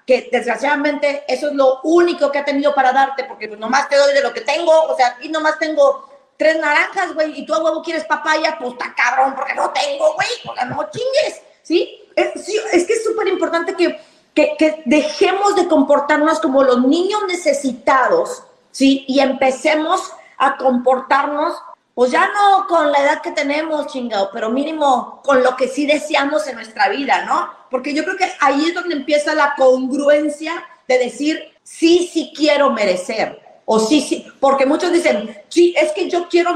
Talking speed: 185 wpm